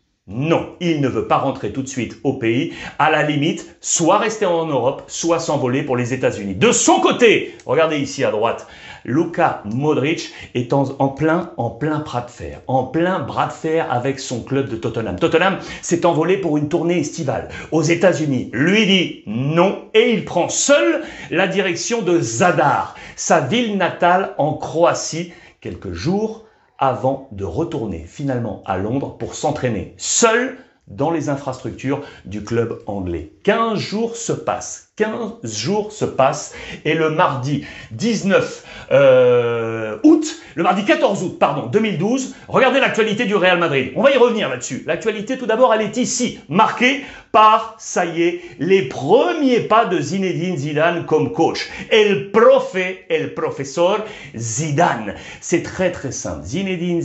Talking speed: 160 wpm